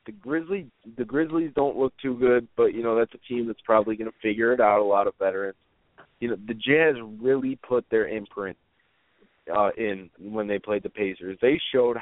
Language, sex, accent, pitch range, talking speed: English, male, American, 105-130 Hz, 205 wpm